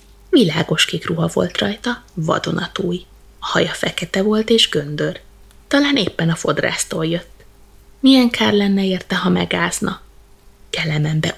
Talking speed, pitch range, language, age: 125 wpm, 165-205 Hz, Hungarian, 20-39